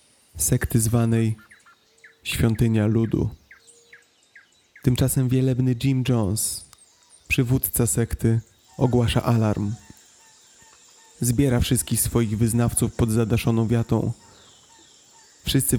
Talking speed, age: 75 wpm, 30-49